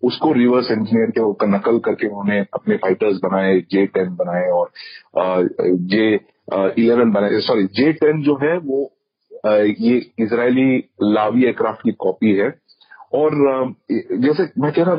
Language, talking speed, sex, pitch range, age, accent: Hindi, 155 wpm, male, 110-175 Hz, 40-59, native